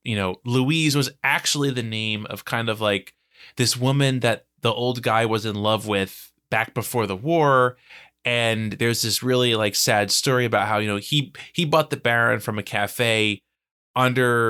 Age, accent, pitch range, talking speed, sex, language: 20-39, American, 100-125 Hz, 185 wpm, male, English